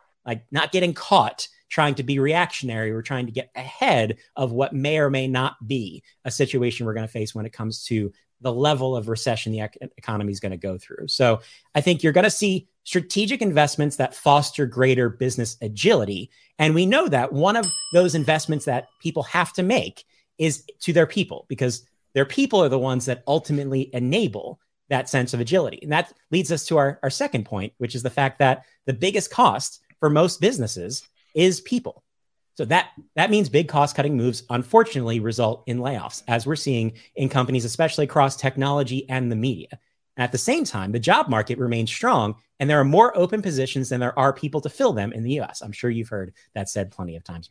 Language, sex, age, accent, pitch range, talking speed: English, male, 30-49, American, 120-160 Hz, 205 wpm